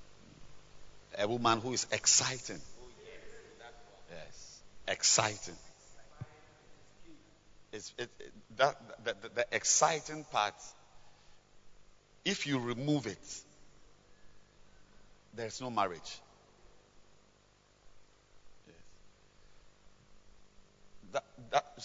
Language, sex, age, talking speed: English, male, 50-69, 70 wpm